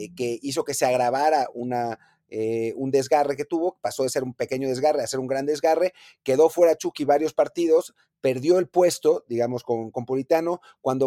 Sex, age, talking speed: male, 30-49, 185 wpm